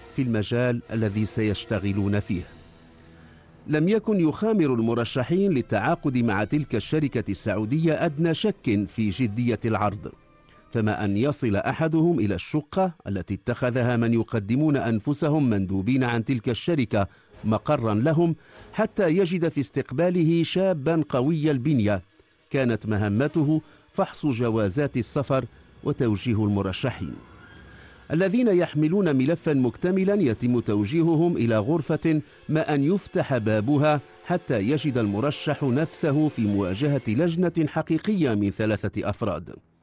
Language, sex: English, male